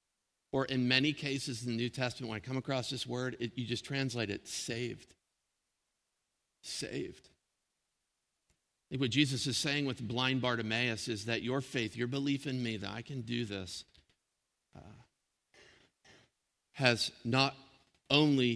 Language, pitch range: English, 110-130 Hz